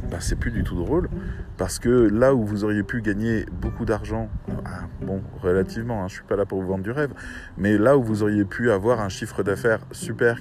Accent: French